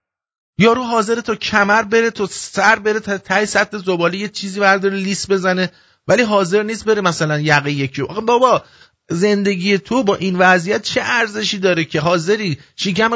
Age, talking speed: 50-69, 170 wpm